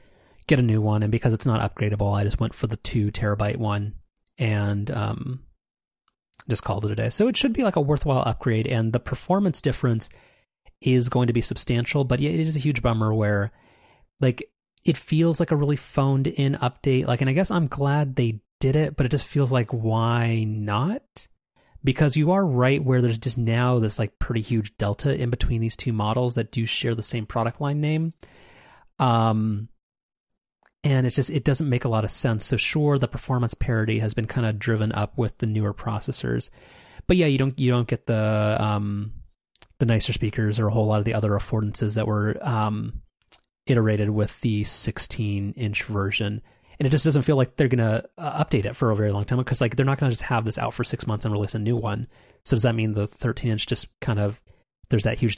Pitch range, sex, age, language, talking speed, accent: 110-135 Hz, male, 30-49, English, 220 wpm, American